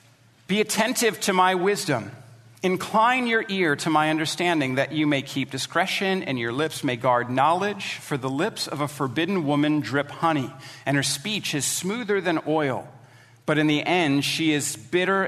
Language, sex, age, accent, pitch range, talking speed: English, male, 40-59, American, 135-175 Hz, 175 wpm